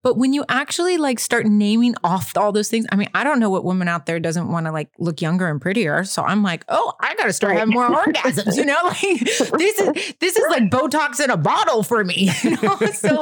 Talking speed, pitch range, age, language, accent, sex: 255 wpm, 180-225 Hz, 30-49, English, American, female